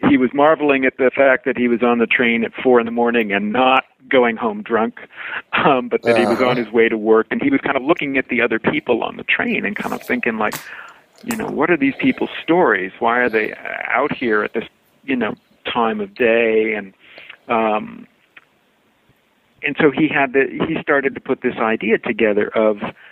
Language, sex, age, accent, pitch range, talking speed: English, male, 50-69, American, 110-140 Hz, 220 wpm